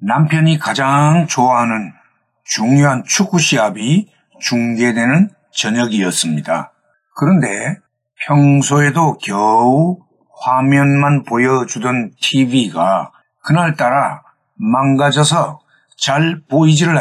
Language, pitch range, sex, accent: Korean, 125-160 Hz, male, native